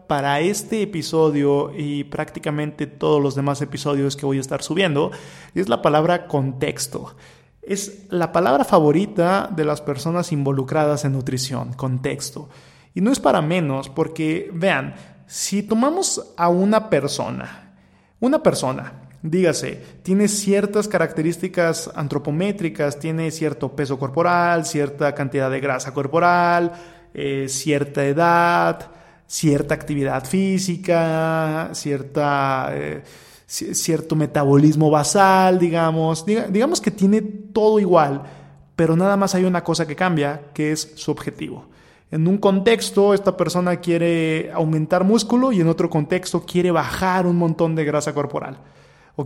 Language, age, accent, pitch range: Spanish, 30-49, Mexican, 145-180 Hz